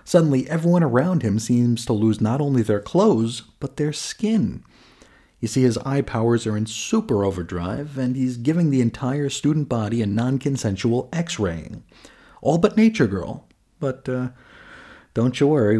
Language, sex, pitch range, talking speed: English, male, 105-135 Hz, 160 wpm